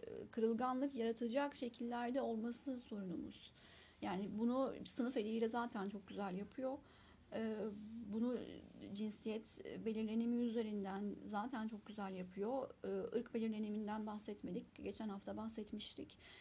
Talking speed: 100 wpm